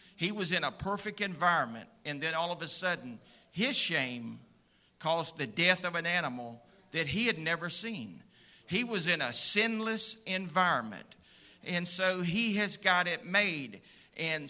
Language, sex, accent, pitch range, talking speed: English, male, American, 160-205 Hz, 160 wpm